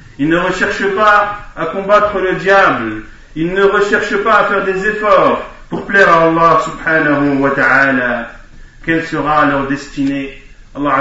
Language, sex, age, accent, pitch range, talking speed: French, male, 40-59, French, 140-200 Hz, 130 wpm